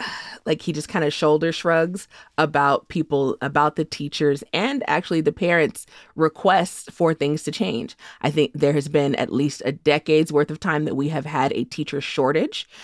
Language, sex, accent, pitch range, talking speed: English, female, American, 145-165 Hz, 185 wpm